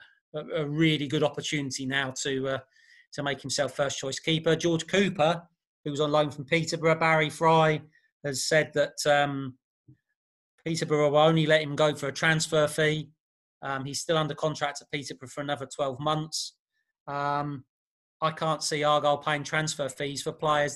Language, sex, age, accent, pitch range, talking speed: English, male, 30-49, British, 140-160 Hz, 170 wpm